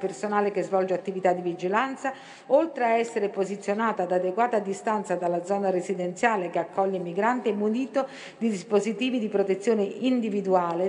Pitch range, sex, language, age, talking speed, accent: 185-240 Hz, female, Italian, 50-69, 150 wpm, native